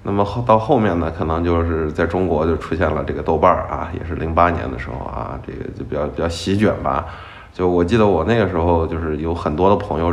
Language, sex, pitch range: Chinese, male, 85-105 Hz